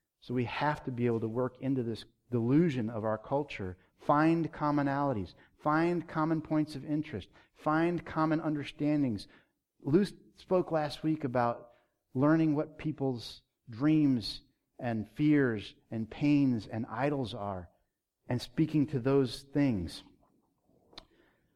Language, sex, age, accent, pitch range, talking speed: English, male, 50-69, American, 110-145 Hz, 125 wpm